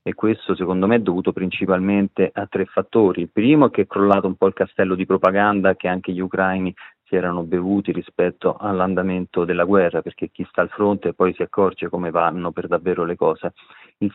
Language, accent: Italian, native